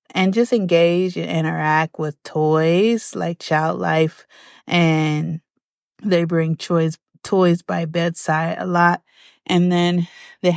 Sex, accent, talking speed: female, American, 125 wpm